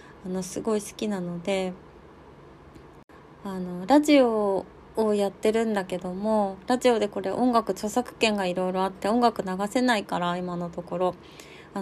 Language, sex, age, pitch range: Japanese, female, 20-39, 185-240 Hz